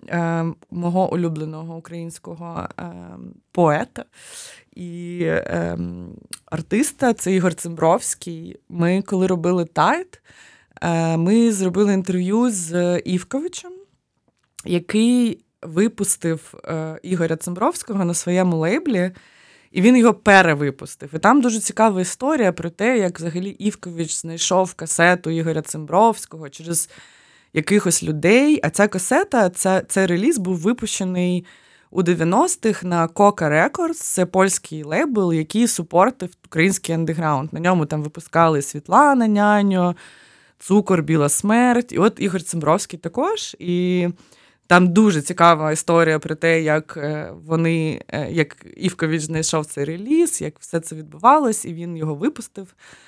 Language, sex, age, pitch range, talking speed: Ukrainian, female, 20-39, 165-205 Hz, 115 wpm